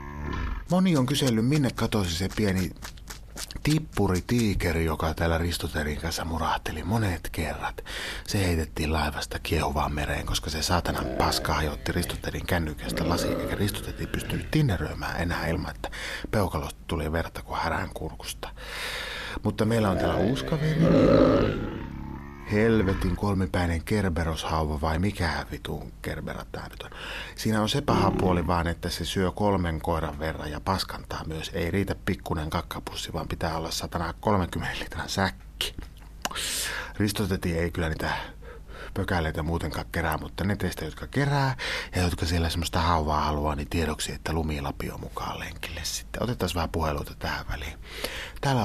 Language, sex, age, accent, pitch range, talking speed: Finnish, male, 30-49, native, 80-100 Hz, 135 wpm